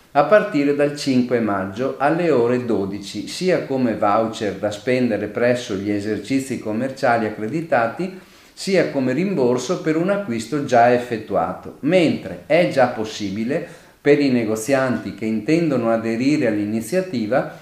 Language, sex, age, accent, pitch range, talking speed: Italian, male, 40-59, native, 110-145 Hz, 125 wpm